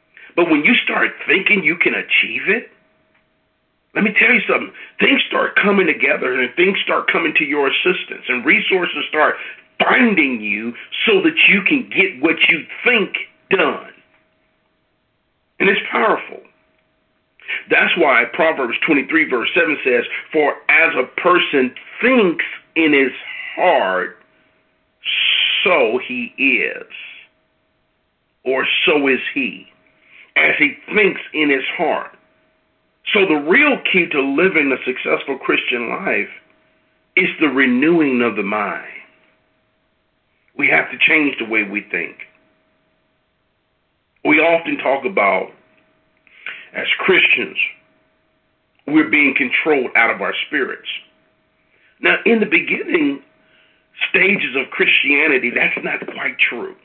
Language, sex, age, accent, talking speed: English, male, 50-69, American, 125 wpm